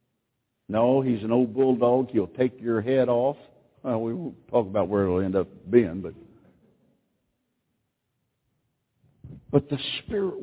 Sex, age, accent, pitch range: male, 60-79, American, 115-150 Hz